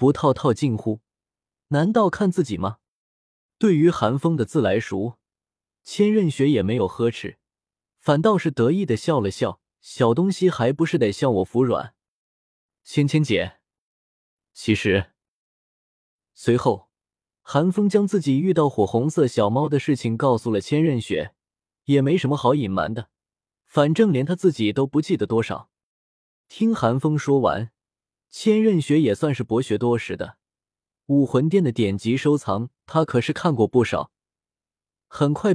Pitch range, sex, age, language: 110-170 Hz, male, 20-39, Chinese